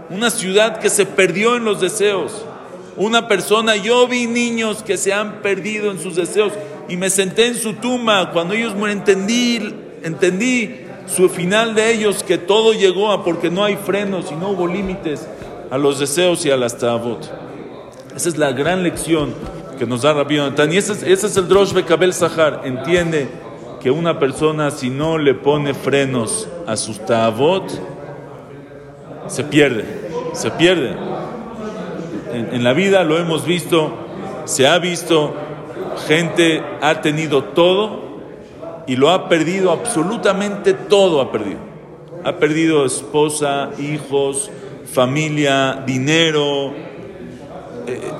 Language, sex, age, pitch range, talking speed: English, male, 50-69, 145-200 Hz, 145 wpm